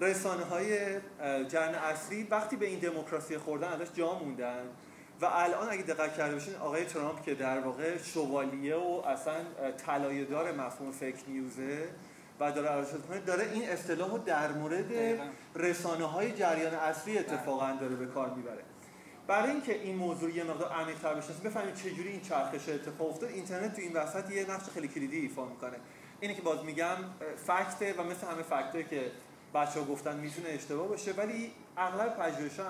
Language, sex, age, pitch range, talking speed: Persian, male, 30-49, 145-185 Hz, 160 wpm